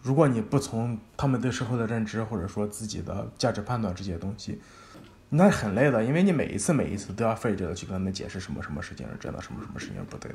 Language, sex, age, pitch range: Chinese, male, 20-39, 105-135 Hz